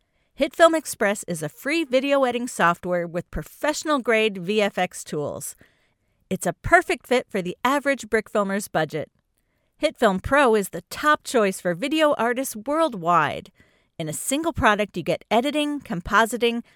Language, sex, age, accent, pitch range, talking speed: English, female, 40-59, American, 190-280 Hz, 145 wpm